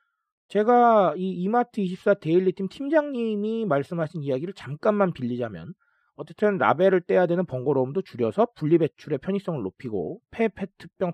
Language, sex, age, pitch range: Korean, male, 40-59, 135-215 Hz